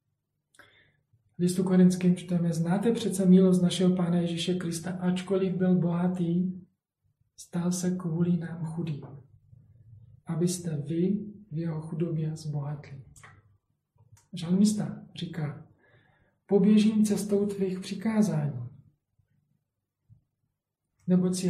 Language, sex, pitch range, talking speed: Czech, male, 135-180 Hz, 90 wpm